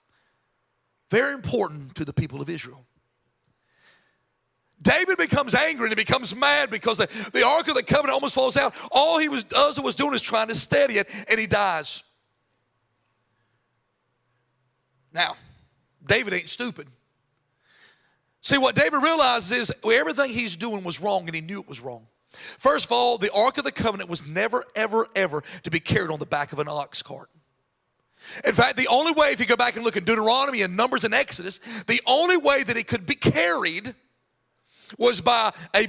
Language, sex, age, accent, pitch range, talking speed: English, male, 40-59, American, 160-245 Hz, 180 wpm